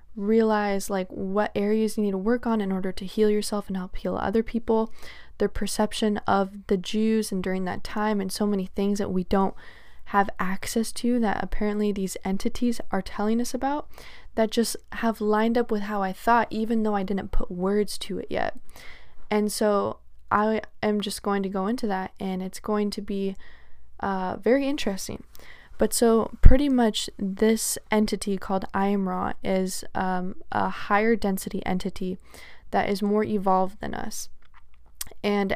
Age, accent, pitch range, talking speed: 10-29, American, 195-215 Hz, 175 wpm